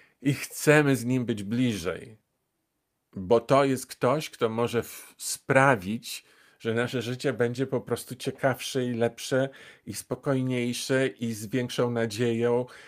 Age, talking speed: 50-69, 130 wpm